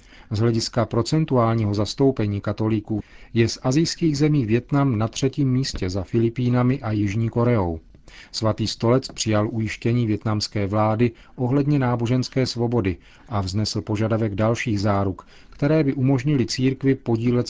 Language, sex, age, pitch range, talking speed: Czech, male, 40-59, 105-125 Hz, 125 wpm